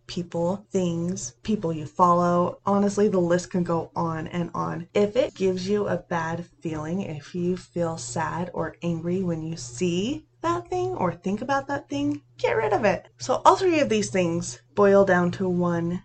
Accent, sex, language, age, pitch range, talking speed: American, female, English, 20-39, 170-215 Hz, 185 wpm